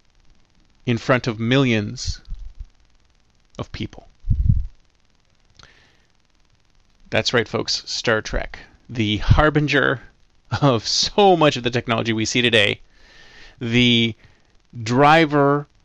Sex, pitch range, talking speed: male, 105-140 Hz, 90 wpm